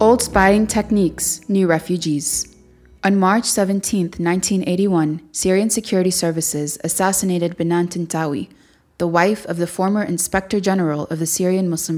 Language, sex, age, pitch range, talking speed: Arabic, female, 20-39, 170-200 Hz, 130 wpm